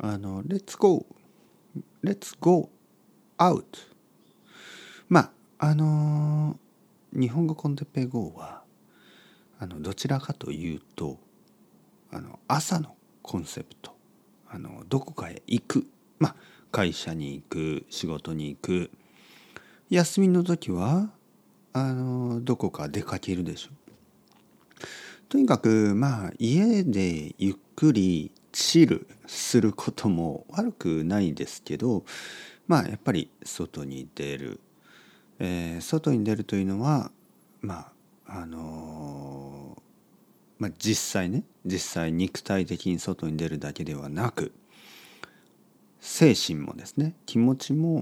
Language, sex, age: Japanese, male, 40-59